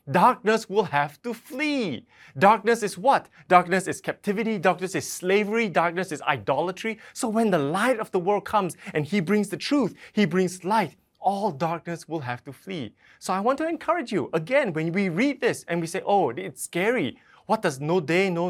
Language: English